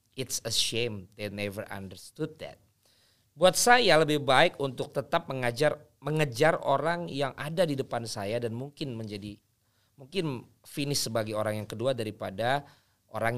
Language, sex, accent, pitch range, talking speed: Indonesian, male, native, 105-130 Hz, 145 wpm